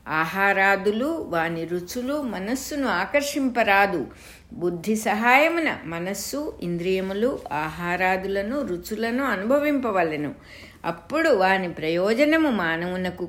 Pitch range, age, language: 170-245 Hz, 60-79, English